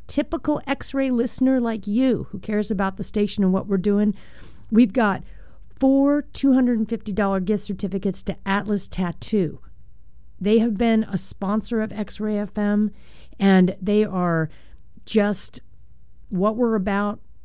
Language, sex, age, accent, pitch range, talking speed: English, female, 40-59, American, 175-215 Hz, 130 wpm